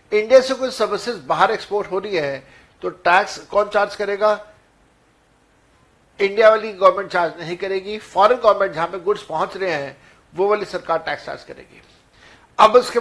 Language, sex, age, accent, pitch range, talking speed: Hindi, male, 60-79, native, 170-225 Hz, 160 wpm